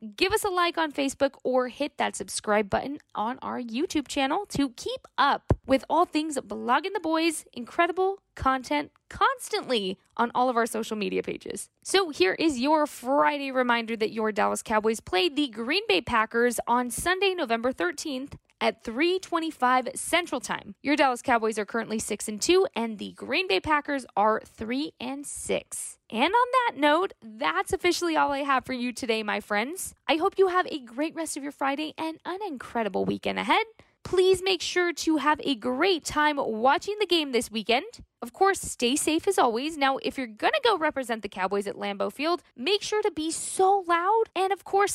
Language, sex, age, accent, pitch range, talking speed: English, female, 20-39, American, 240-365 Hz, 190 wpm